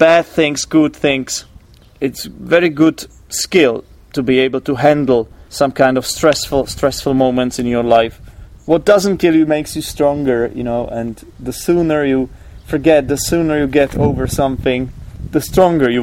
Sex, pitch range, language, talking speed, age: male, 125-165 Hz, English, 170 wpm, 30-49